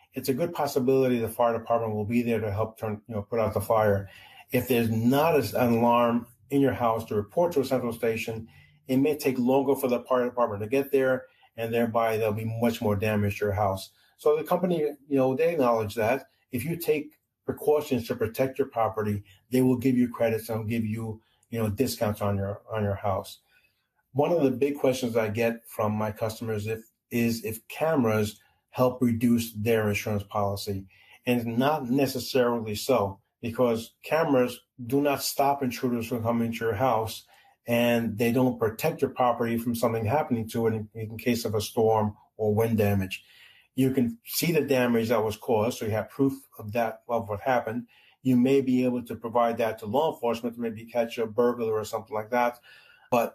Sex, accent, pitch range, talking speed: male, American, 110-130 Hz, 200 wpm